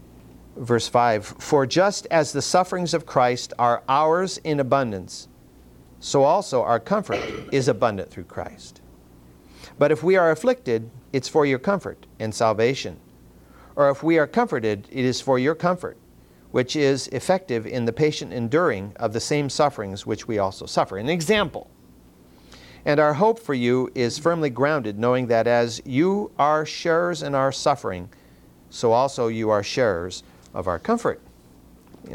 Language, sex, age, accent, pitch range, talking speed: English, male, 50-69, American, 95-140 Hz, 160 wpm